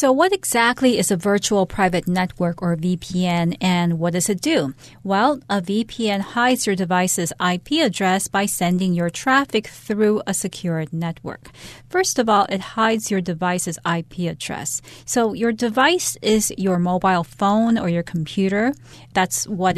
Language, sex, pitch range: Chinese, female, 175-210 Hz